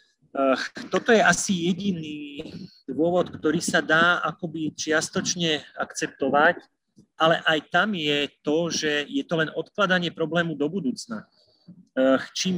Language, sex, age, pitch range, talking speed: Slovak, male, 30-49, 145-180 Hz, 120 wpm